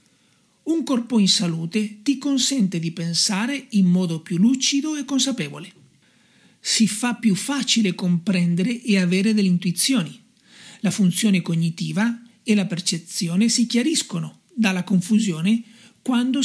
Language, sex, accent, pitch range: Italian, male, native, 185-235 Hz